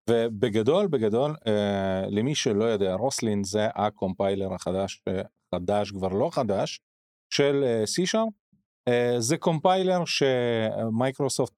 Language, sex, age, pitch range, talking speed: Hebrew, male, 30-49, 105-140 Hz, 100 wpm